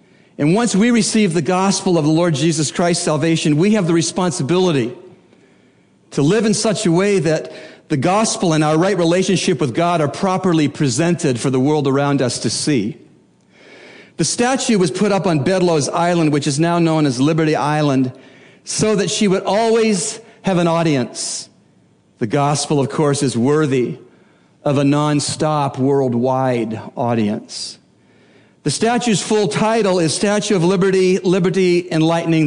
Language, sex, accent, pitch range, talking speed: English, male, American, 150-195 Hz, 155 wpm